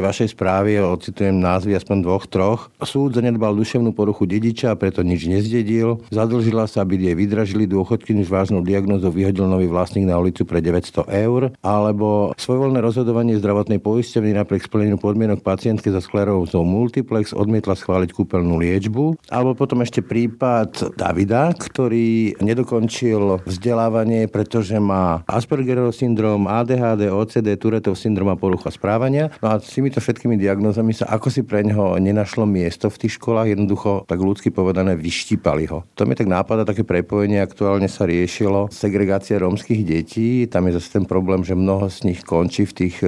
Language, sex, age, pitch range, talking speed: Slovak, male, 50-69, 95-110 Hz, 155 wpm